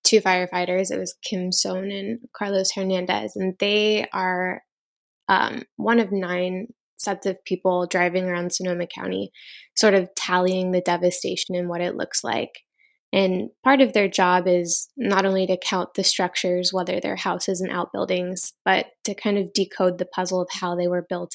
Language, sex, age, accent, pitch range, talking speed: English, female, 10-29, American, 180-200 Hz, 175 wpm